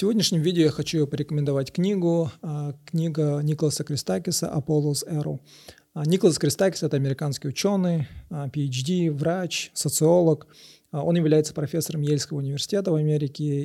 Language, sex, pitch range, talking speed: Russian, male, 145-165 Hz, 125 wpm